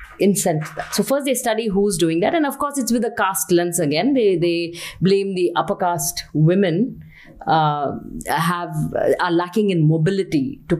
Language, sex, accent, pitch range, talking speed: English, female, Indian, 155-210 Hz, 180 wpm